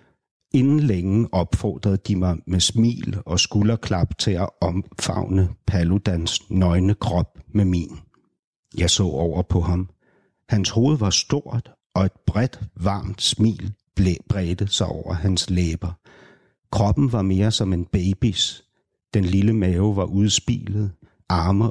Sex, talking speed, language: male, 135 wpm, Danish